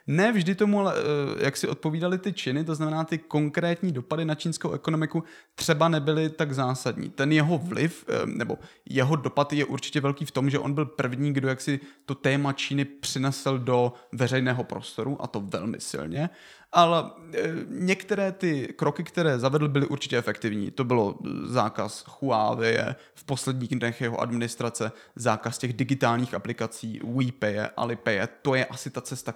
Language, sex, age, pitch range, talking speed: Czech, male, 30-49, 125-140 Hz, 160 wpm